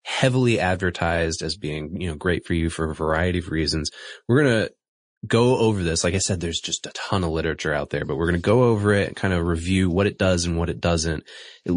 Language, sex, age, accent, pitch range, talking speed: English, male, 20-39, American, 85-110 Hz, 255 wpm